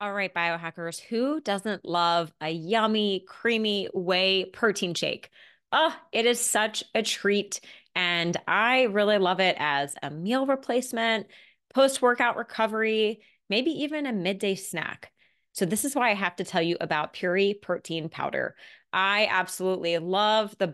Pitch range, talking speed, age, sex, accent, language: 170-225 Hz, 150 wpm, 20-39, female, American, English